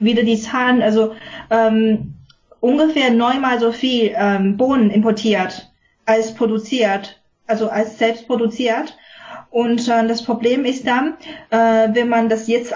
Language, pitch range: German, 215-245 Hz